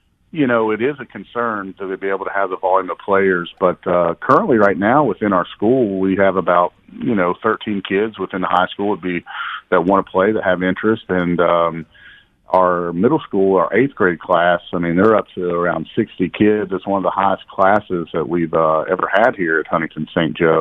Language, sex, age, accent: English, male, 40-59, American